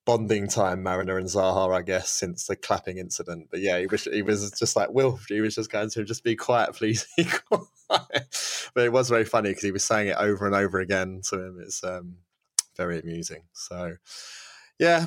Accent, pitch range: British, 95-115 Hz